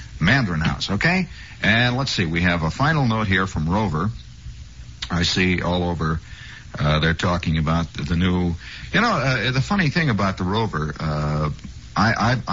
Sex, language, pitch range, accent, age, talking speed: male, English, 85-120 Hz, American, 60-79, 170 wpm